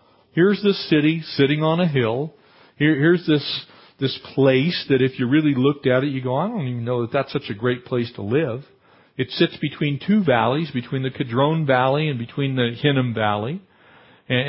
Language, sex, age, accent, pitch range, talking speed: English, male, 50-69, American, 125-155 Hz, 200 wpm